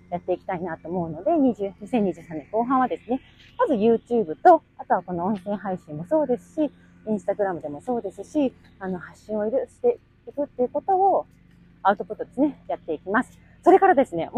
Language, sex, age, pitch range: Japanese, female, 30-49, 170-265 Hz